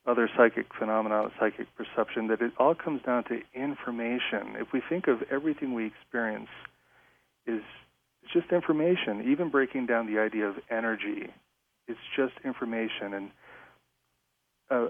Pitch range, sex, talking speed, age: 110-145 Hz, male, 140 wpm, 40-59